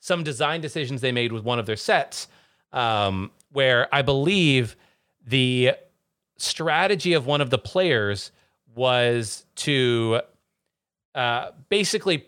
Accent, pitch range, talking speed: American, 125-175 Hz, 120 wpm